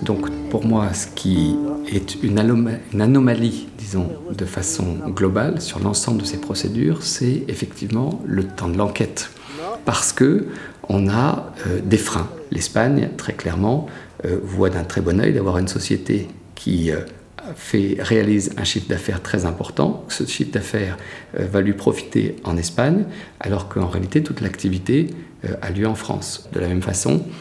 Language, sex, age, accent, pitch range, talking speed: French, male, 50-69, French, 95-120 Hz, 165 wpm